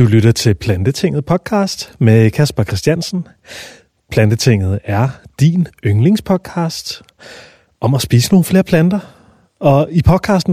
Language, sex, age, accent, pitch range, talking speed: Danish, male, 30-49, native, 120-165 Hz, 120 wpm